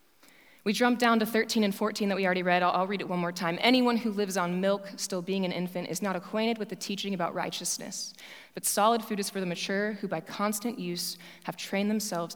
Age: 20-39